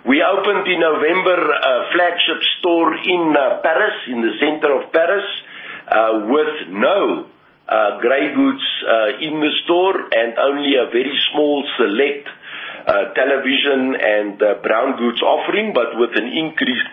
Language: English